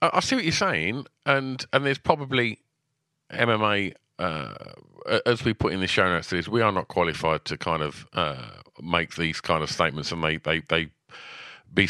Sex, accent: male, British